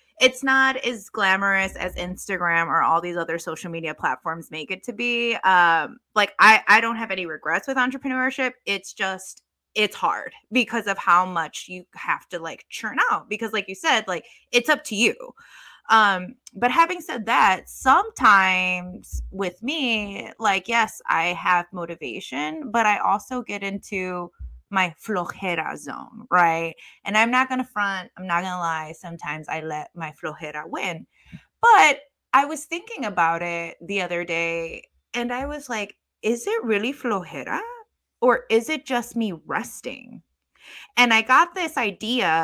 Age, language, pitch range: 20-39, English, 170-240 Hz